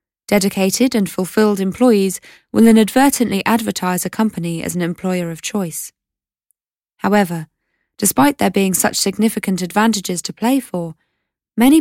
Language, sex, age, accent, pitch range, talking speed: English, female, 20-39, British, 180-230 Hz, 125 wpm